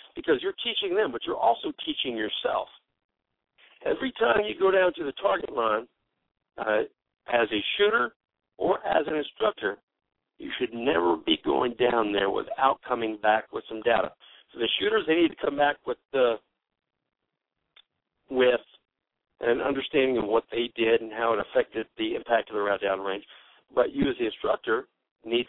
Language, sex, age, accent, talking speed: English, male, 50-69, American, 170 wpm